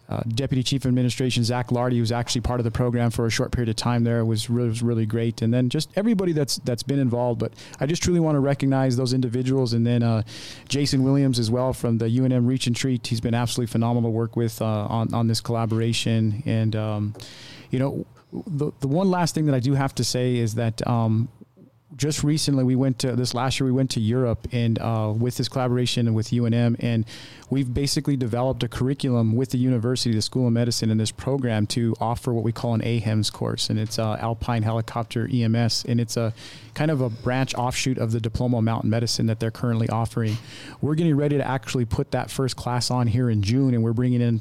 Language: English